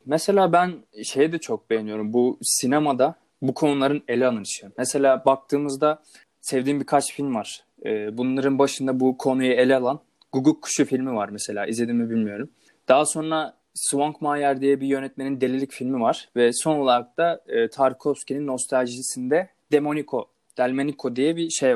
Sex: male